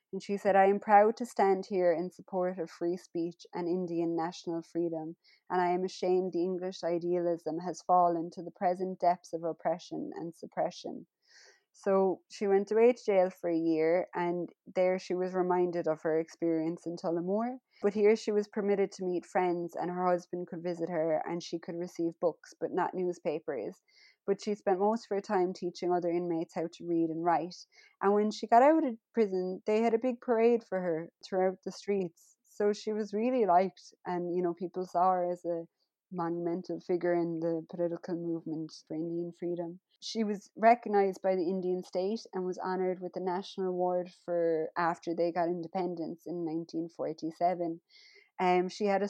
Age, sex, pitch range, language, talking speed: 20-39, female, 170-195 Hz, English, 190 wpm